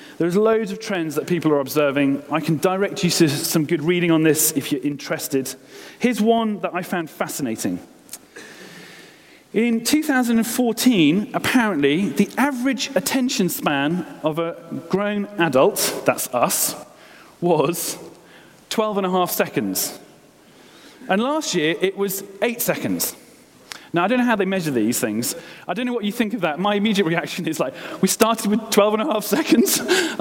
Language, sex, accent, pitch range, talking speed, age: English, male, British, 155-225 Hz, 165 wpm, 40-59